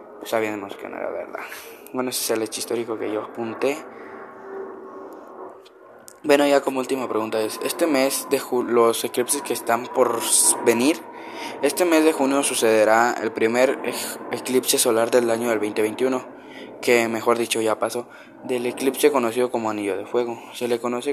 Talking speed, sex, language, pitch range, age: 170 wpm, male, Spanish, 110-130 Hz, 10-29